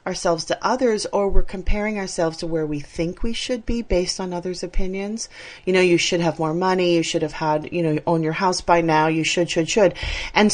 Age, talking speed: 30-49, 235 wpm